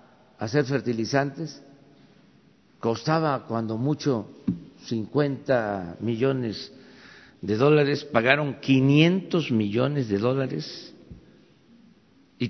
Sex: male